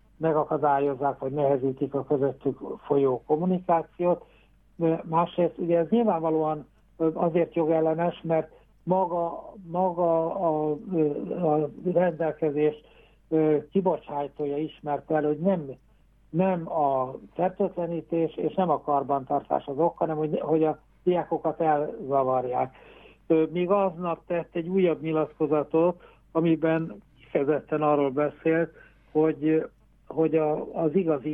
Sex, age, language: male, 60-79, Hungarian